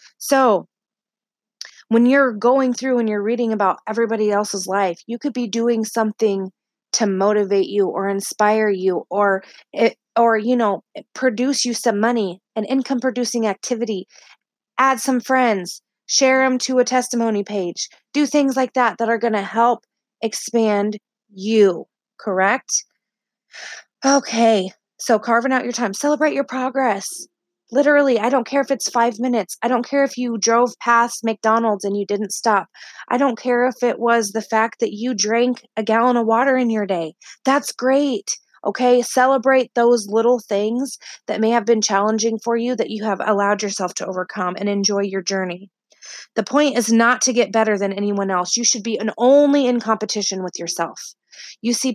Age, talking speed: 20-39, 170 wpm